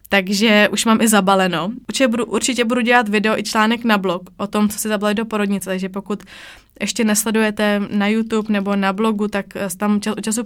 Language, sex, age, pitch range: Czech, female, 20-39, 200-220 Hz